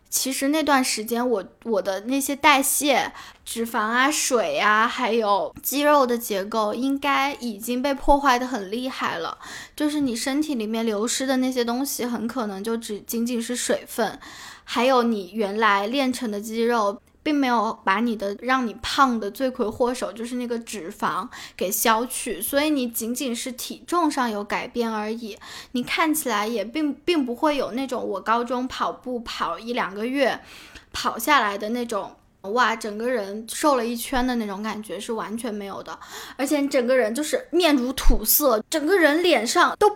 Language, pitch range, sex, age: Chinese, 225-285 Hz, female, 10-29